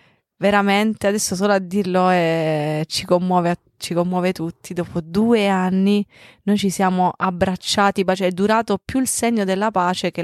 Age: 20-39